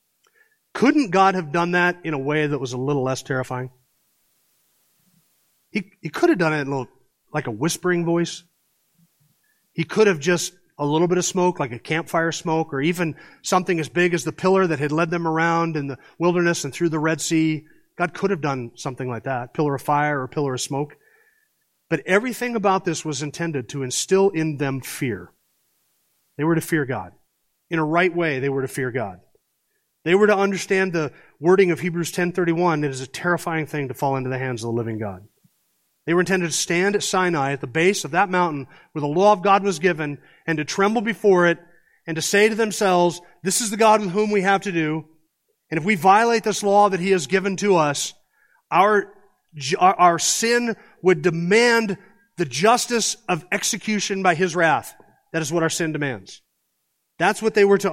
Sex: male